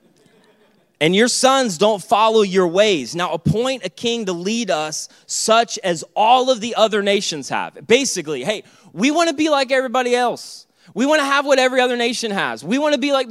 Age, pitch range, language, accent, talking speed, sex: 20-39, 195-245 Hz, English, American, 190 wpm, male